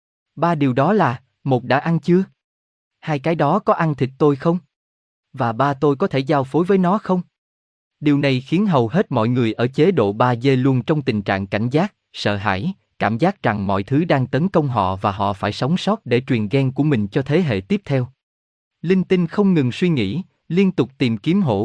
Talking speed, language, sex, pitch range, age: 225 wpm, Vietnamese, male, 110-165 Hz, 20-39